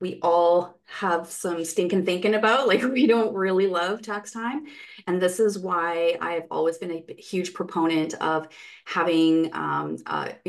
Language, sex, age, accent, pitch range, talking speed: English, female, 30-49, American, 165-230 Hz, 160 wpm